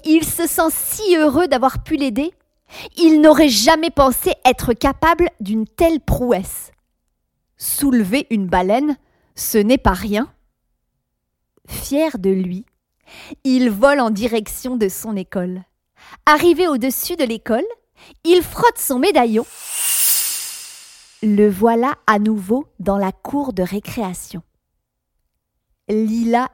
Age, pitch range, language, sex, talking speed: 40-59, 210-315 Hz, French, female, 120 wpm